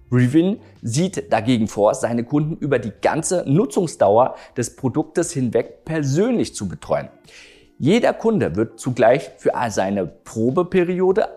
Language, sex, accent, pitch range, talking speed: German, male, German, 120-180 Hz, 120 wpm